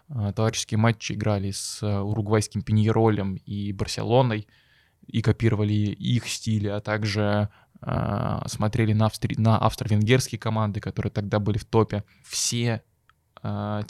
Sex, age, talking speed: male, 20-39, 115 wpm